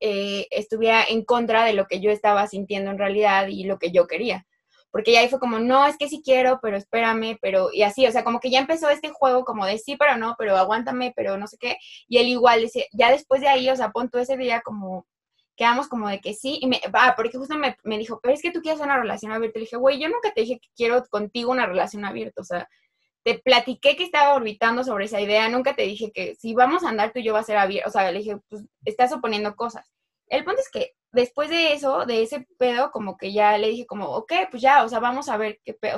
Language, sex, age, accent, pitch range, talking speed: Spanish, female, 20-39, Mexican, 215-270 Hz, 265 wpm